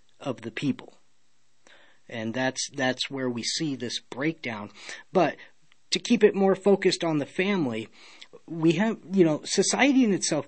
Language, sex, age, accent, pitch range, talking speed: English, male, 40-59, American, 125-175 Hz, 155 wpm